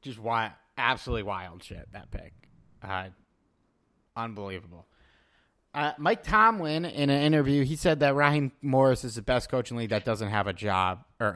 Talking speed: 175 wpm